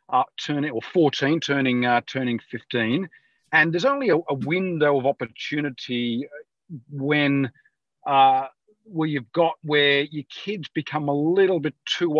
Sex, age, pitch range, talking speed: male, 40-59, 130-160 Hz, 150 wpm